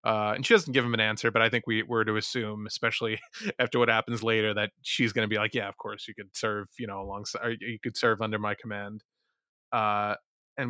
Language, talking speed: English, 240 wpm